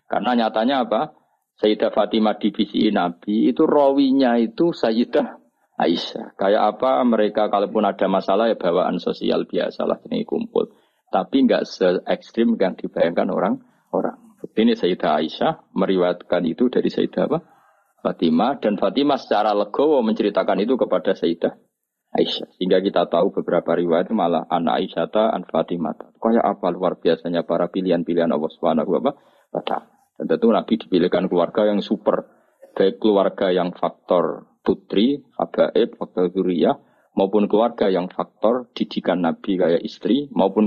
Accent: native